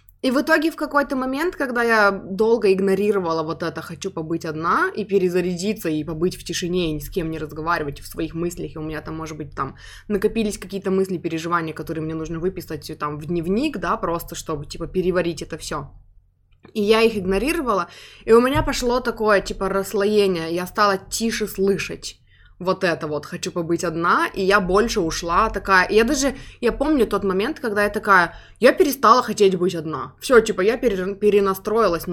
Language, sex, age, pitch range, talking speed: Russian, female, 20-39, 170-215 Hz, 185 wpm